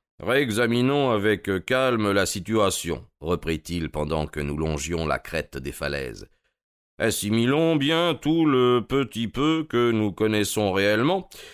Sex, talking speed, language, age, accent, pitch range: male, 125 wpm, French, 40-59, French, 95-130 Hz